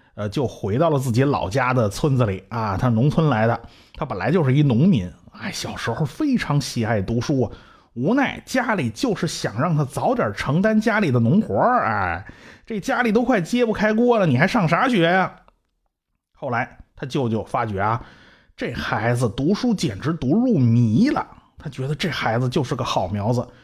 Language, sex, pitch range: Chinese, male, 115-170 Hz